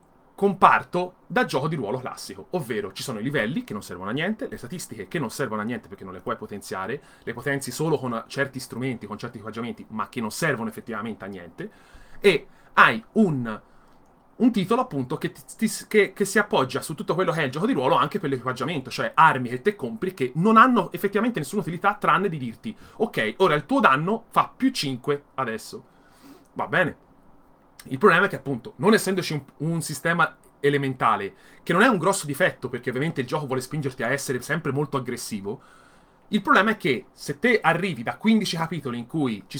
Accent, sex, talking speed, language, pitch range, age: native, male, 200 wpm, Italian, 135-205 Hz, 30-49